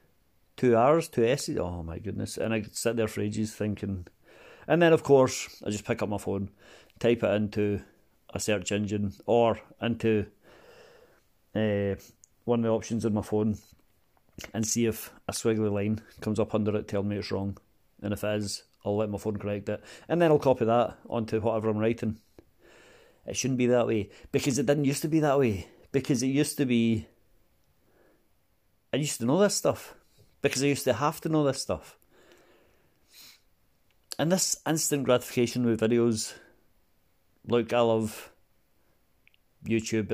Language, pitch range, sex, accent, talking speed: English, 105-120 Hz, male, British, 175 wpm